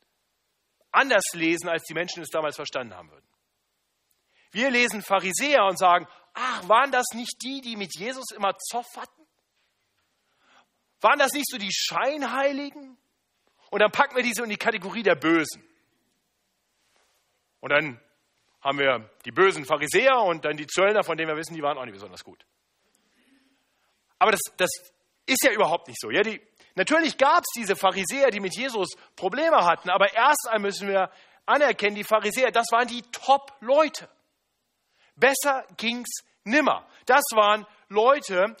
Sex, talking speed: male, 155 wpm